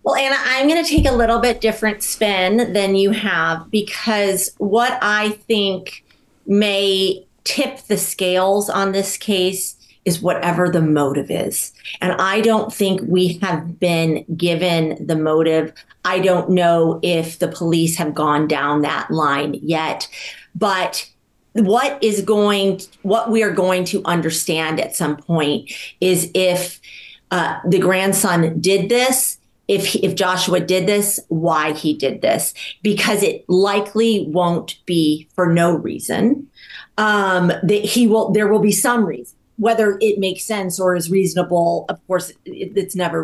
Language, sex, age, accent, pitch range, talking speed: English, female, 30-49, American, 170-210 Hz, 150 wpm